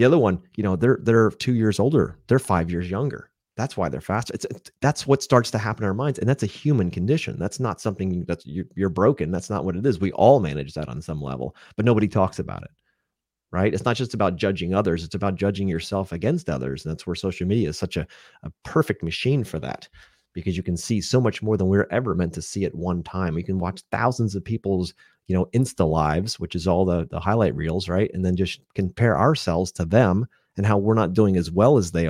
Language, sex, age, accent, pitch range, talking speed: English, male, 30-49, American, 90-115 Hz, 250 wpm